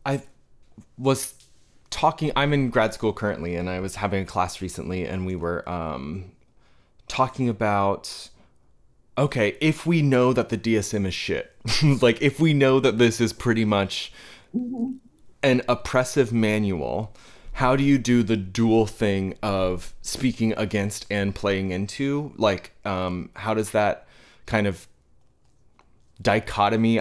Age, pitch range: 20-39, 100-130 Hz